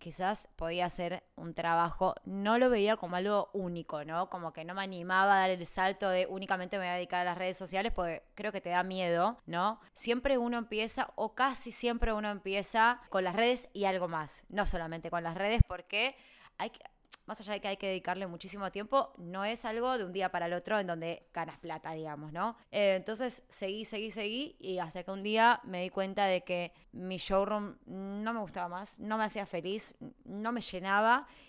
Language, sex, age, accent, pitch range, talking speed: Spanish, female, 20-39, Argentinian, 180-220 Hz, 210 wpm